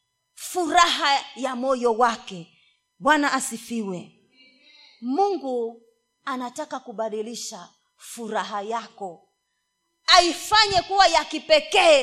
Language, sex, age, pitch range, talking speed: Swahili, female, 30-49, 265-400 Hz, 75 wpm